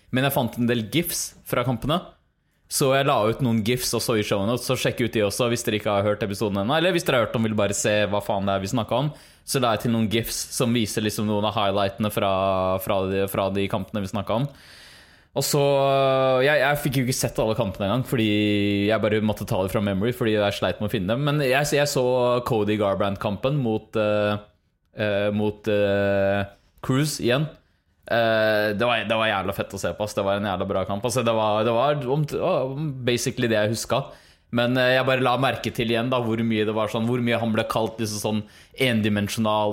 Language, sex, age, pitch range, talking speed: English, male, 20-39, 105-125 Hz, 235 wpm